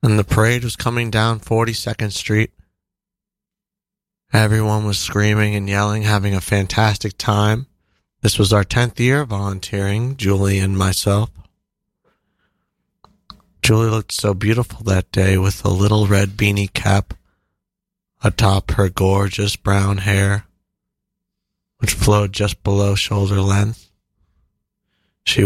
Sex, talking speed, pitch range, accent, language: male, 120 wpm, 100-115 Hz, American, English